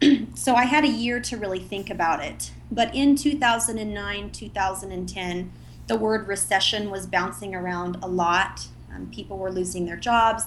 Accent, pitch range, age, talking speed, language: American, 185-225 Hz, 30-49, 155 wpm, English